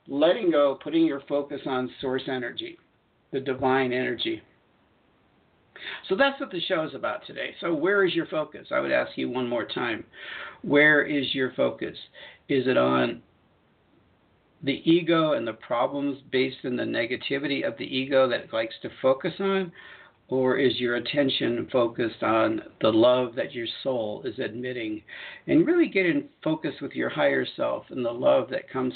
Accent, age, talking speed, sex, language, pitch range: American, 50-69, 170 wpm, male, English, 130-210 Hz